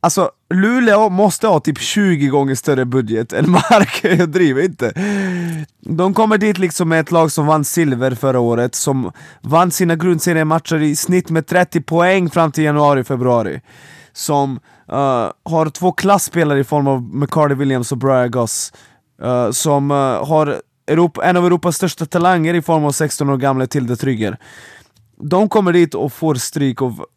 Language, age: Swedish, 20-39